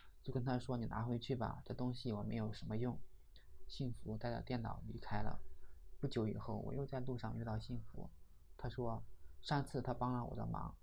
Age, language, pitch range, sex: 20-39, Chinese, 100-125 Hz, male